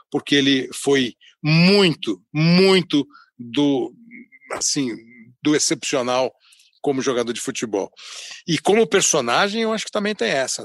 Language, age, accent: Portuguese, 60-79, Brazilian